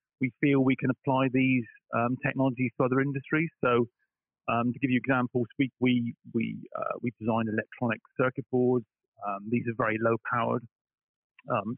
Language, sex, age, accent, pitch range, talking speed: English, male, 30-49, British, 120-135 Hz, 165 wpm